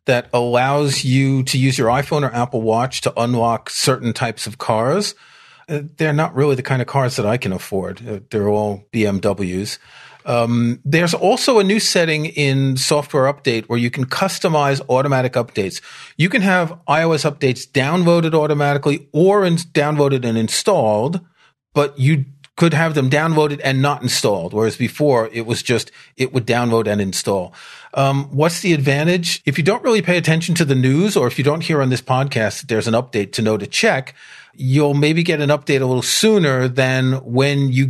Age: 40-59